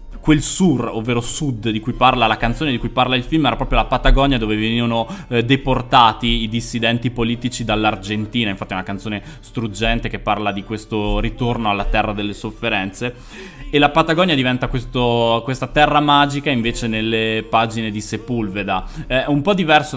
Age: 20-39